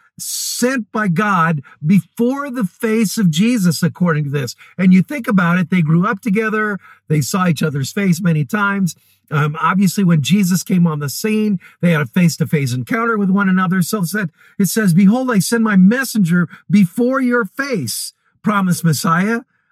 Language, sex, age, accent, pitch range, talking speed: English, male, 50-69, American, 170-215 Hz, 175 wpm